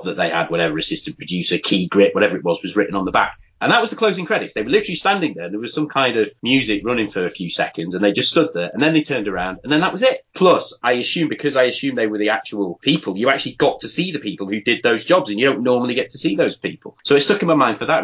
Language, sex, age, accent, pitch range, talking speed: English, male, 30-49, British, 100-150 Hz, 305 wpm